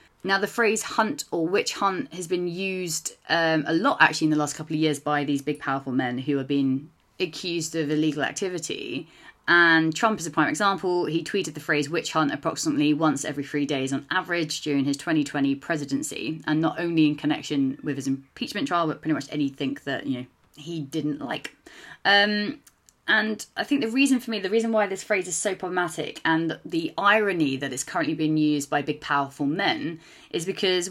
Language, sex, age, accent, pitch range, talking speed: English, female, 30-49, British, 150-195 Hz, 200 wpm